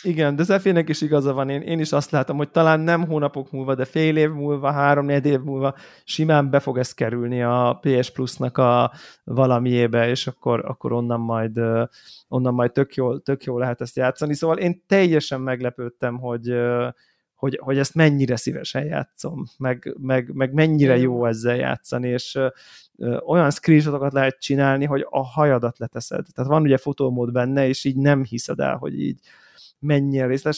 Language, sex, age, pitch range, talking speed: Hungarian, male, 20-39, 125-150 Hz, 175 wpm